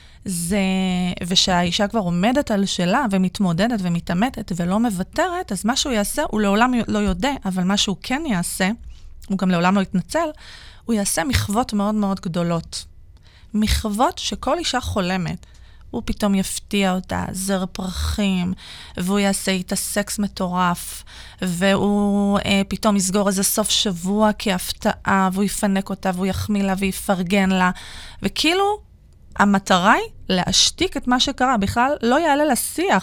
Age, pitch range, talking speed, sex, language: 30-49, 185-230 Hz, 140 wpm, female, Hebrew